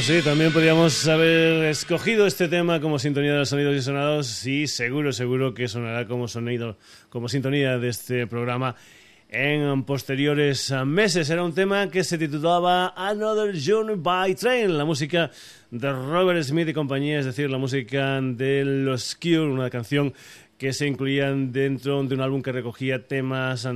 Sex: male